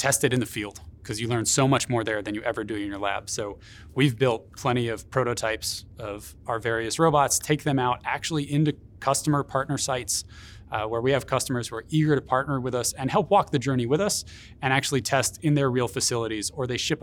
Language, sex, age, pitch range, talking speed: English, male, 20-39, 105-130 Hz, 235 wpm